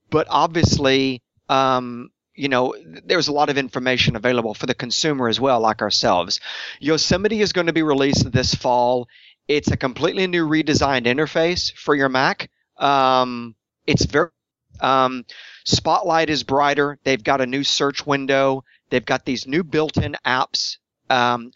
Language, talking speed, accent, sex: English, 155 wpm, American, male